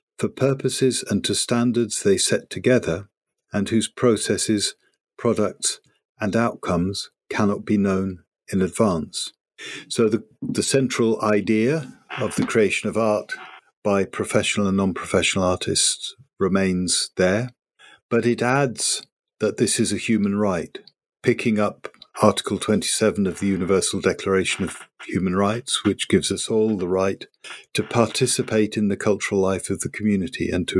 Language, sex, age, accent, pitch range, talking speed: English, male, 50-69, British, 100-125 Hz, 140 wpm